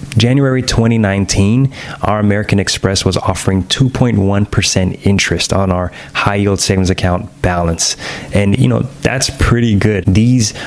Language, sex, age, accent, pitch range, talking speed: English, male, 20-39, American, 95-110 Hz, 130 wpm